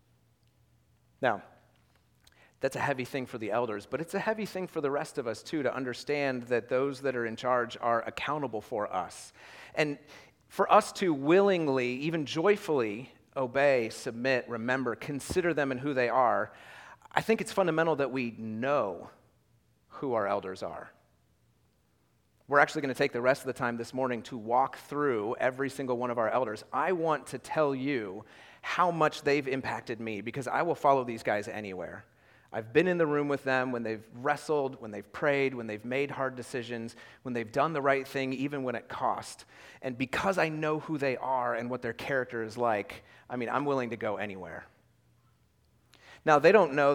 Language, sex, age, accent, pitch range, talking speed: English, male, 40-59, American, 120-145 Hz, 190 wpm